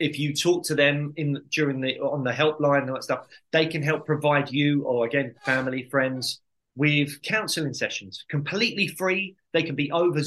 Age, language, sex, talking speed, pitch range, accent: 20-39, English, male, 195 wpm, 135-160 Hz, British